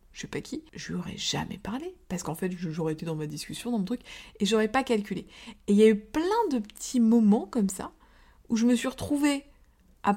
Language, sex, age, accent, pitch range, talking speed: French, female, 20-39, French, 195-245 Hz, 235 wpm